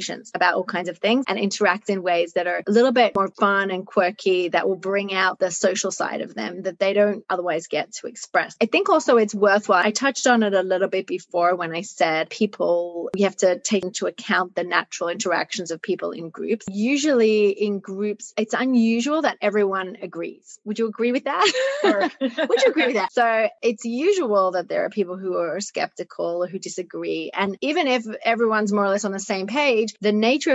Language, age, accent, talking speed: English, 30-49, Australian, 210 wpm